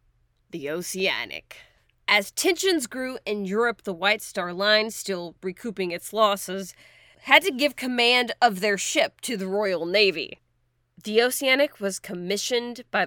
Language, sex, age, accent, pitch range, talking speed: English, female, 30-49, American, 190-255 Hz, 140 wpm